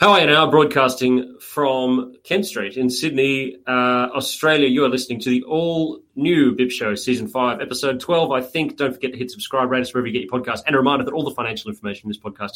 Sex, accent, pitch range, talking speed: male, Australian, 110-135 Hz, 230 wpm